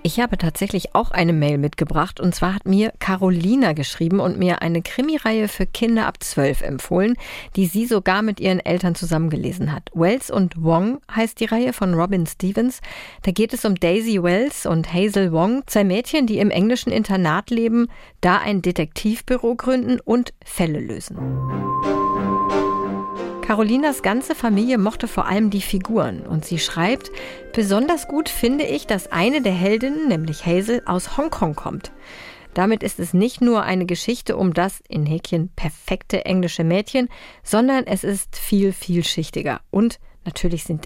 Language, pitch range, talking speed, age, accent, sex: German, 170-230 Hz, 160 wpm, 50-69, German, female